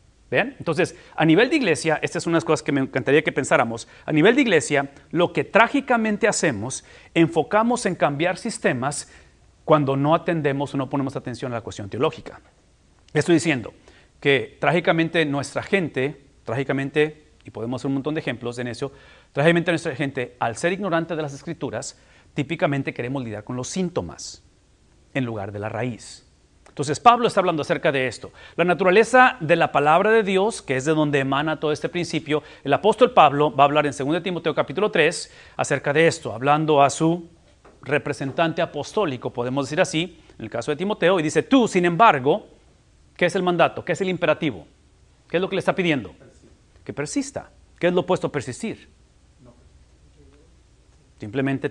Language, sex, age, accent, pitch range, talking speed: English, male, 40-59, Mexican, 135-175 Hz, 175 wpm